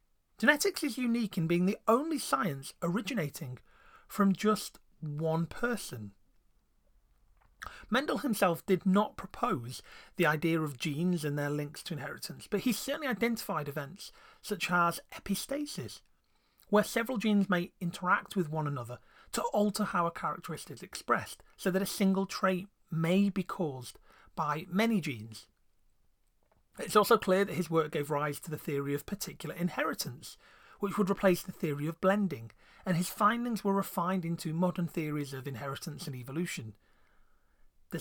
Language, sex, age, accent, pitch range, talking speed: English, male, 30-49, British, 150-205 Hz, 150 wpm